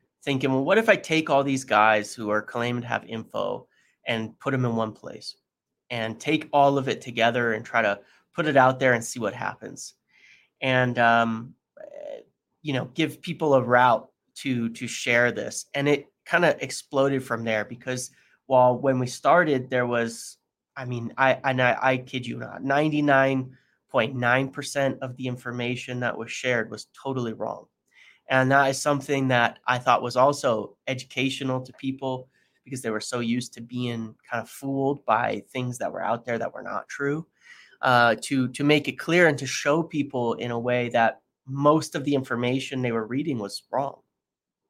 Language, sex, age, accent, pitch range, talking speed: English, male, 30-49, American, 120-140 Hz, 185 wpm